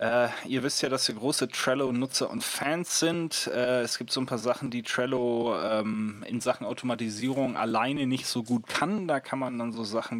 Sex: male